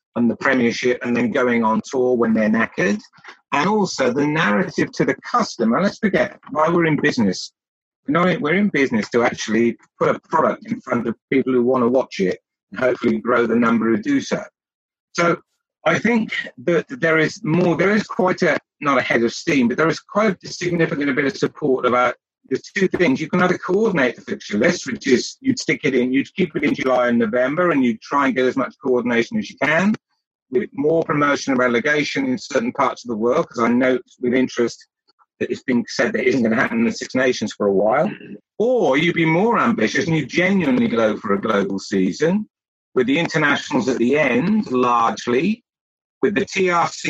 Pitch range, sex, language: 125-185 Hz, male, English